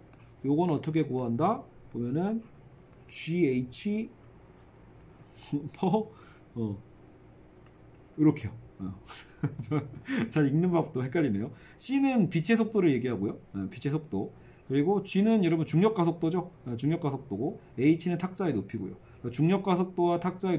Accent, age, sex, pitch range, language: native, 40-59, male, 125-190 Hz, Korean